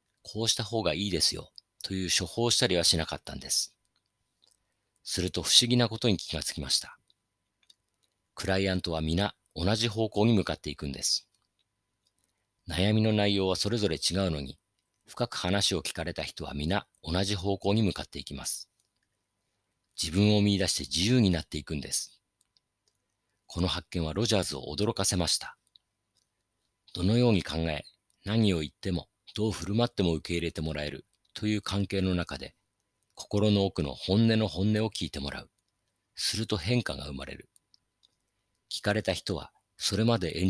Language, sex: Japanese, male